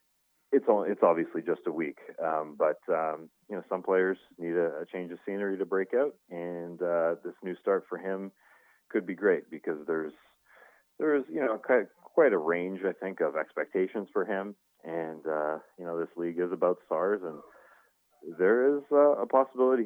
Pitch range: 80-100 Hz